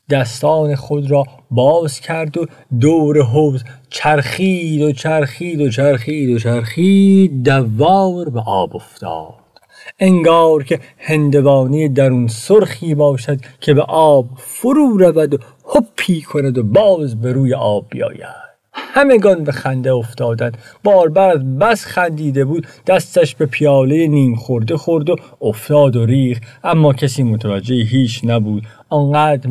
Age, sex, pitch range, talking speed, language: 50-69, male, 120-150 Hz, 130 wpm, Persian